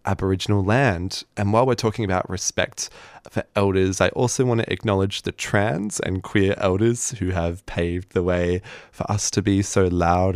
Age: 20-39